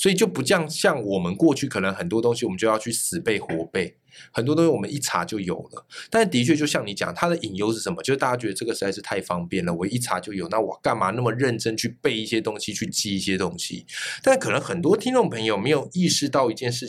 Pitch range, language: 115-165 Hz, Chinese